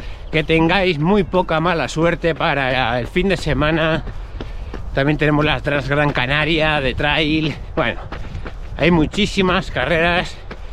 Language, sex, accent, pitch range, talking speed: Spanish, male, Spanish, 140-185 Hz, 130 wpm